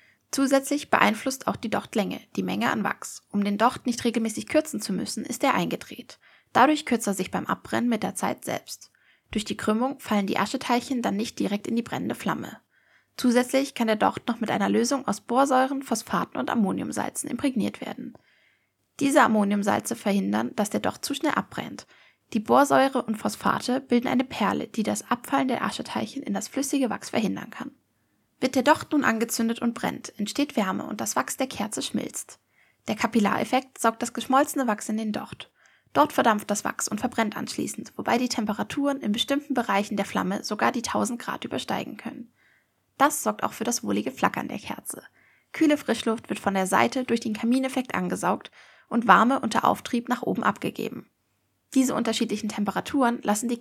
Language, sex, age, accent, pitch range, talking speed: German, female, 20-39, German, 220-270 Hz, 180 wpm